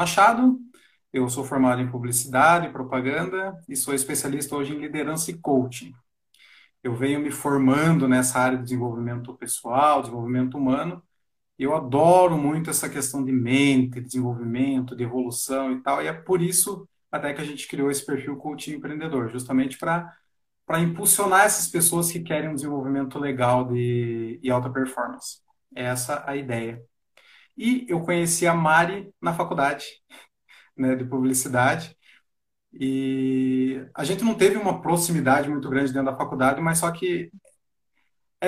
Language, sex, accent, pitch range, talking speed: Portuguese, male, Brazilian, 130-170 Hz, 155 wpm